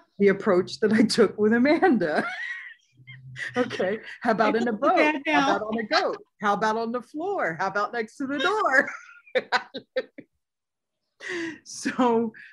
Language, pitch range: English, 145-220 Hz